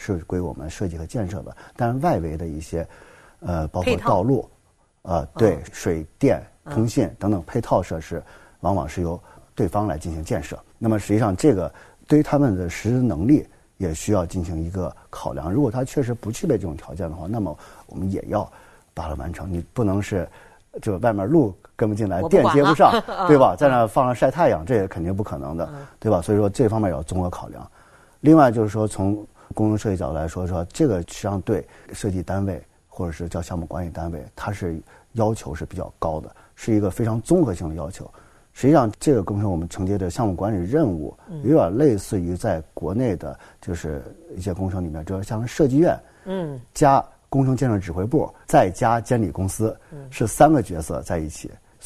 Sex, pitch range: male, 85-115 Hz